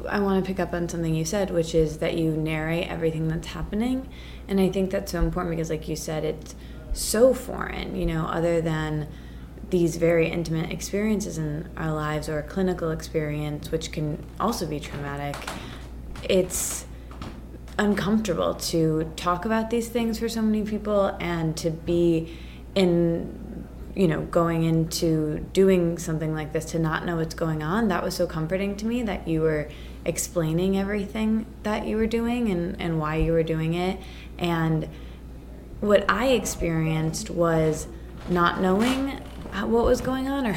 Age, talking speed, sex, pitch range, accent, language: 20-39, 165 wpm, female, 155-190 Hz, American, English